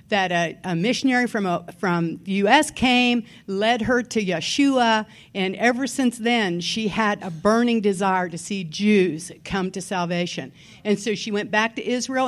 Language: English